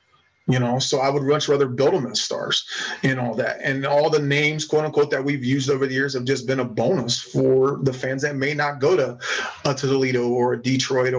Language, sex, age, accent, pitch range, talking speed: English, male, 30-49, American, 130-155 Hz, 225 wpm